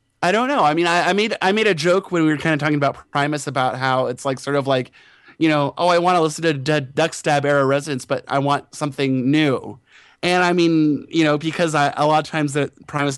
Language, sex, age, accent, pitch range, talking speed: English, male, 20-39, American, 130-170 Hz, 255 wpm